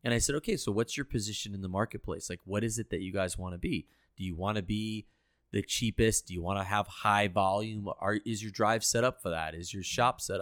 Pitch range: 95-115 Hz